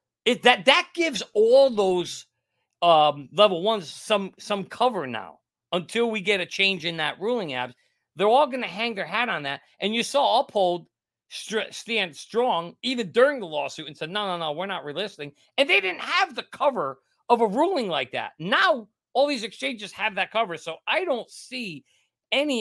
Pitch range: 145-210 Hz